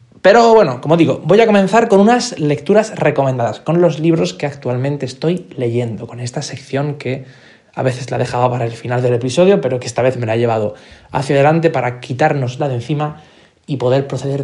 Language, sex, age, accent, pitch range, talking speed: Spanish, male, 20-39, Spanish, 125-170 Hz, 210 wpm